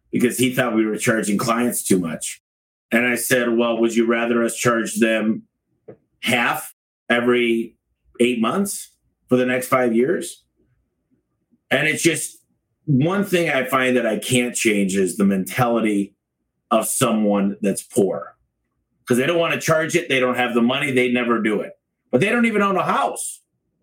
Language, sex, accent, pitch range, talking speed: English, male, American, 115-155 Hz, 175 wpm